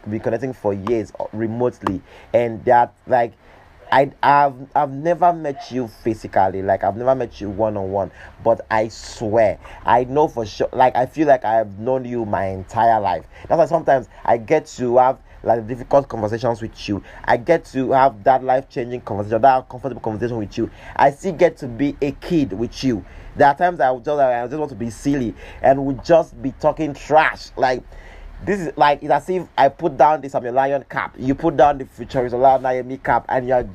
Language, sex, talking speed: English, male, 215 wpm